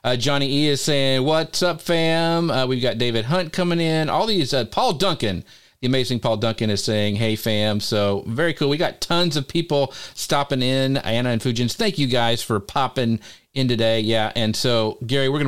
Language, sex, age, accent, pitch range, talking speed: English, male, 40-59, American, 115-150 Hz, 215 wpm